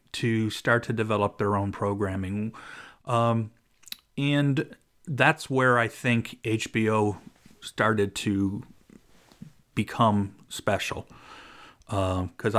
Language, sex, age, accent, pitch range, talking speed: English, male, 40-59, American, 105-125 Hz, 95 wpm